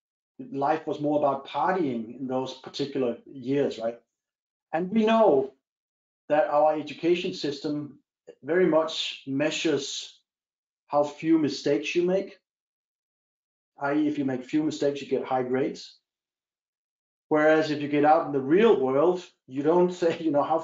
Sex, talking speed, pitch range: male, 145 wpm, 140-175 Hz